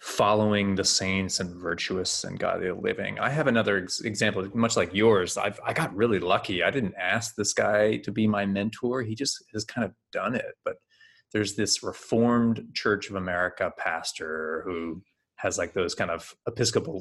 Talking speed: 175 wpm